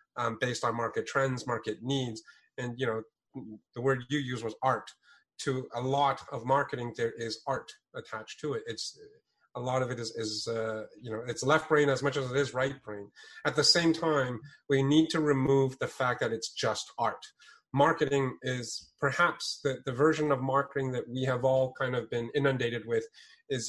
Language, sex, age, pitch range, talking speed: English, male, 30-49, 115-150 Hz, 200 wpm